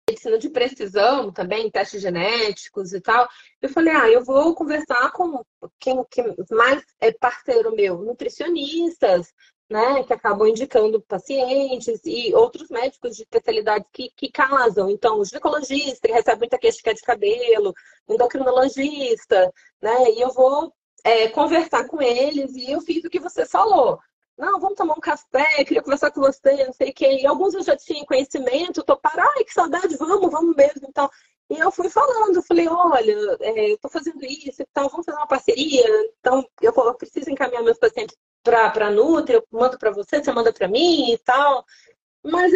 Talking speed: 180 wpm